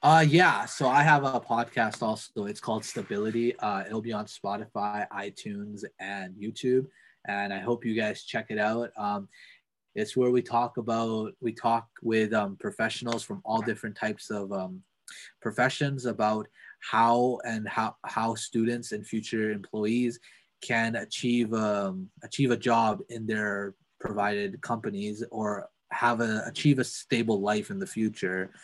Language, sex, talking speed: English, male, 155 wpm